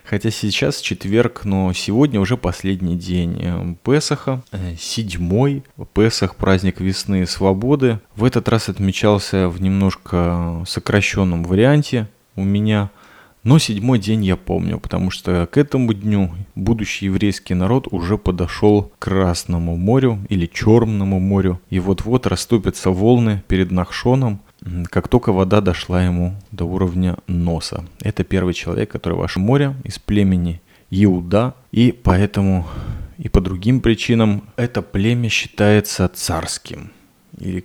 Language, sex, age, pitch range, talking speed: Russian, male, 20-39, 95-115 Hz, 130 wpm